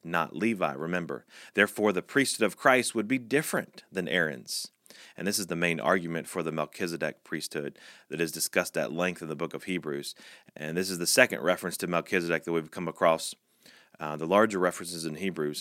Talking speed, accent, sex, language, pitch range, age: 195 wpm, American, male, English, 80-95 Hz, 30-49